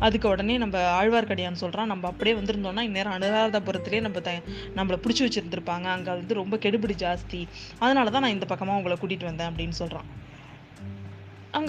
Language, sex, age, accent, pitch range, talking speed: Tamil, female, 20-39, native, 185-235 Hz, 145 wpm